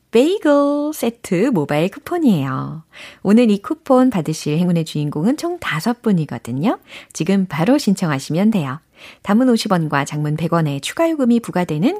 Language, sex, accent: Korean, female, native